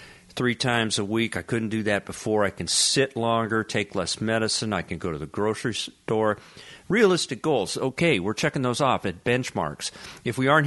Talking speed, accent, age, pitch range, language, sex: 195 wpm, American, 50-69, 95-125 Hz, English, male